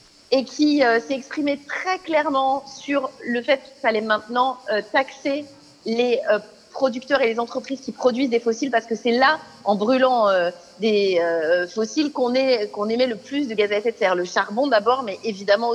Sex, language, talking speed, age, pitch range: female, French, 200 wpm, 30-49, 215-265 Hz